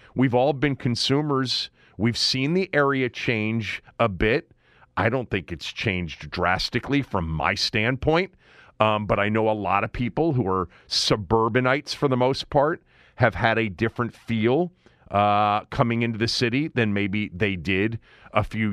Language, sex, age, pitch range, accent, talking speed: English, male, 40-59, 105-140 Hz, American, 165 wpm